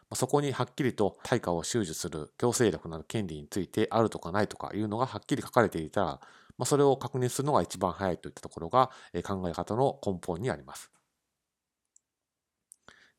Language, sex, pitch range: Japanese, male, 90-125 Hz